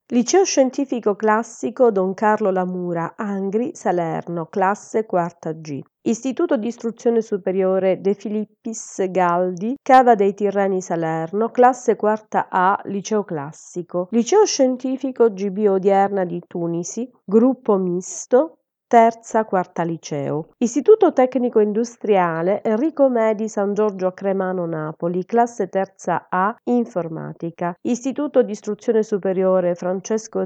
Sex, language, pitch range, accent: female, Italian, 180-235 Hz, native